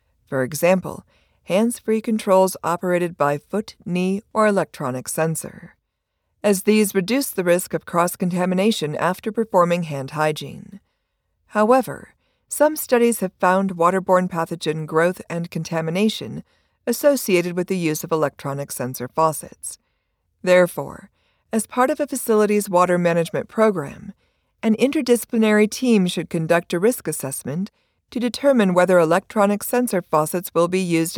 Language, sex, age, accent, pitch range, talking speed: English, female, 50-69, American, 160-215 Hz, 125 wpm